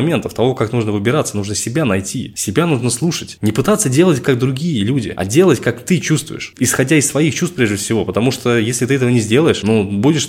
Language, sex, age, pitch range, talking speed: Russian, male, 20-39, 105-135 Hz, 210 wpm